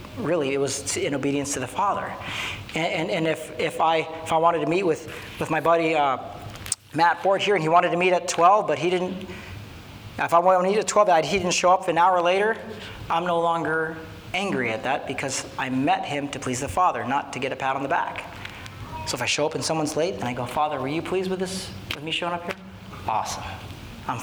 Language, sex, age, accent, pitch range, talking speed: English, male, 40-59, American, 120-180 Hz, 245 wpm